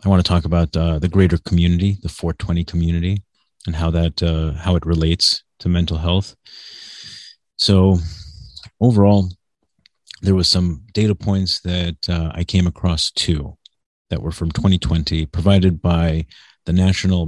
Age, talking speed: 30-49, 150 wpm